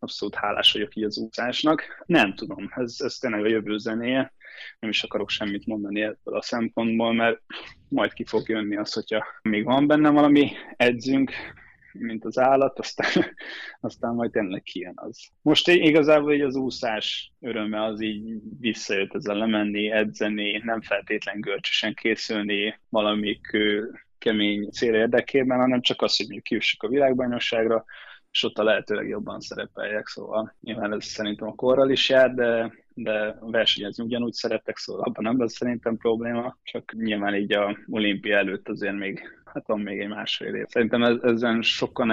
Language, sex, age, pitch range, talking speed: Hungarian, male, 20-39, 105-120 Hz, 155 wpm